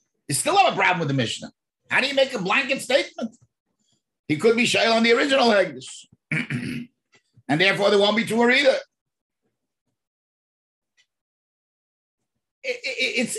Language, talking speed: English, 150 wpm